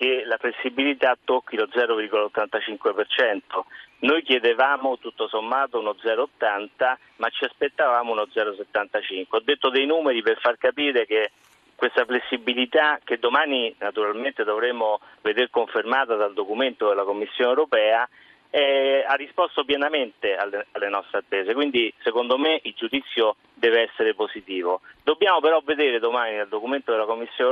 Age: 40-59